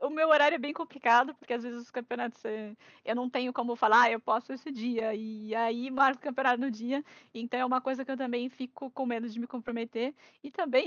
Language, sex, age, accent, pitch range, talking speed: Portuguese, female, 10-29, Brazilian, 235-280 Hz, 235 wpm